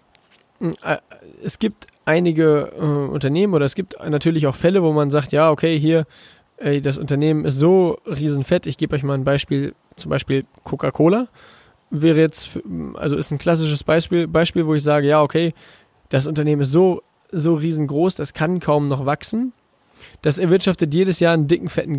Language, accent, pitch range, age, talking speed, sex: German, German, 145-175 Hz, 20-39, 165 wpm, male